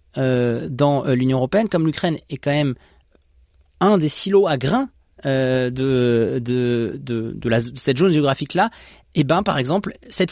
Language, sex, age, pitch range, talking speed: French, male, 30-49, 140-185 Hz, 175 wpm